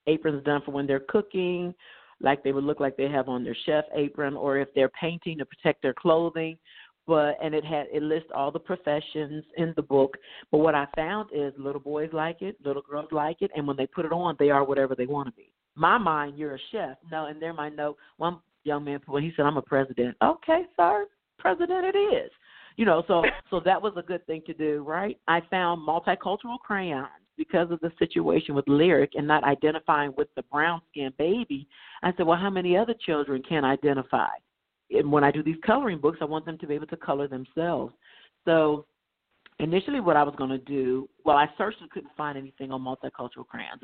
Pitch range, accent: 140-170 Hz, American